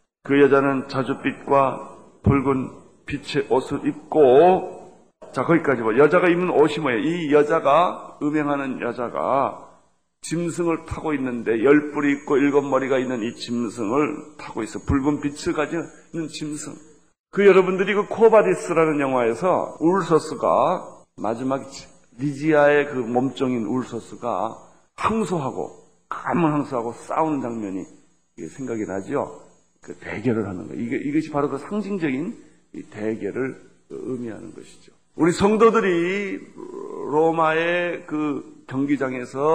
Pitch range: 135-175 Hz